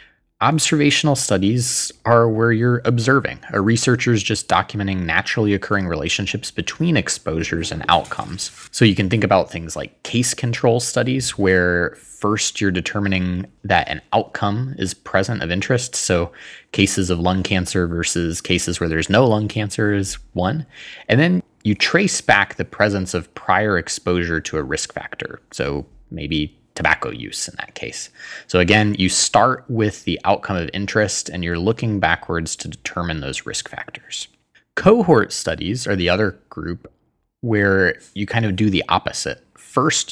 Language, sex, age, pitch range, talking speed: English, male, 20-39, 90-110 Hz, 160 wpm